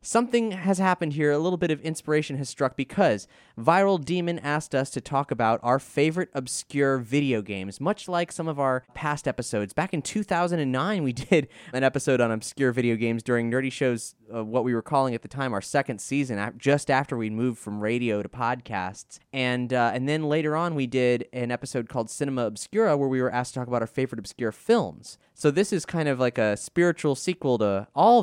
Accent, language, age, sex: American, English, 20-39, male